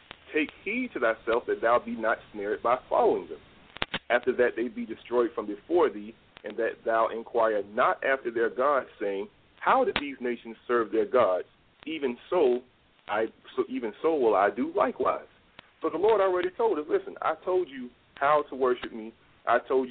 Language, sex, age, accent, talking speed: English, male, 40-59, American, 185 wpm